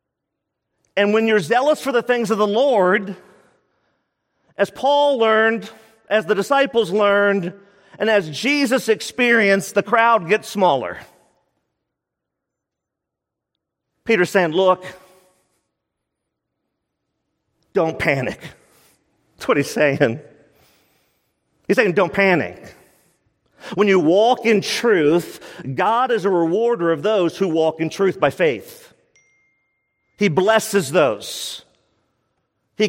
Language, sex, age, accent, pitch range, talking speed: English, male, 50-69, American, 180-225 Hz, 110 wpm